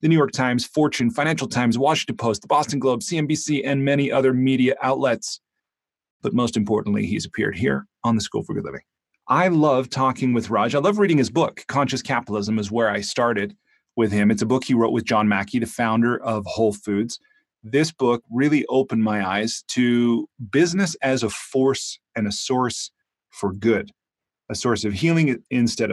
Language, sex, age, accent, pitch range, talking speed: English, male, 30-49, American, 110-135 Hz, 190 wpm